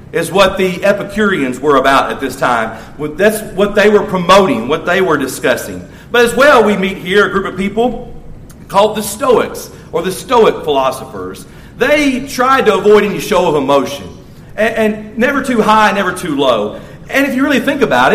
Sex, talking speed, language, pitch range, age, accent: male, 190 wpm, English, 185-235 Hz, 40-59, American